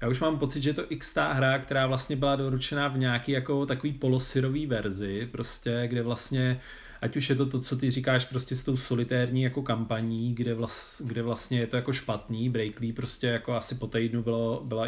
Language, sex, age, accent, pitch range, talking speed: Czech, male, 30-49, native, 120-130 Hz, 210 wpm